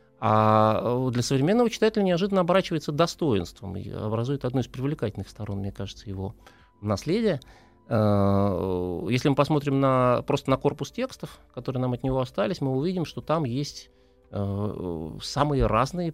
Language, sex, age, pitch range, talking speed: Russian, male, 30-49, 100-135 Hz, 140 wpm